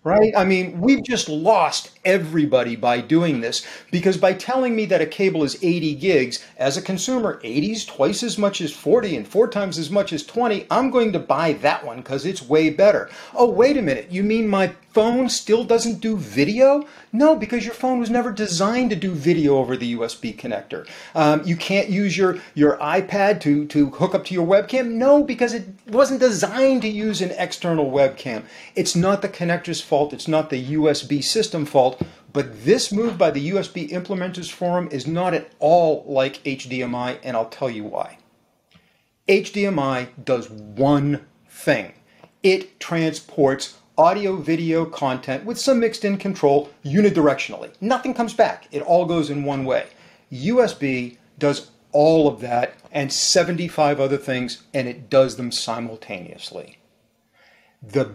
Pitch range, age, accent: 145-210 Hz, 40-59, American